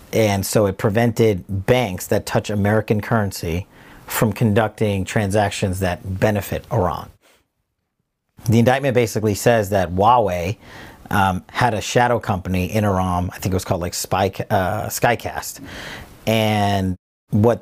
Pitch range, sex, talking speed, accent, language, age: 95-115 Hz, male, 135 wpm, American, English, 40-59